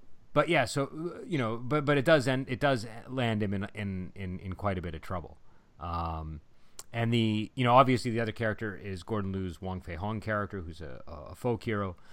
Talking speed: 215 wpm